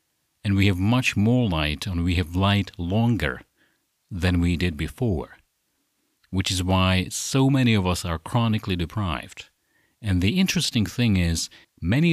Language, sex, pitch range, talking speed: English, male, 85-110 Hz, 155 wpm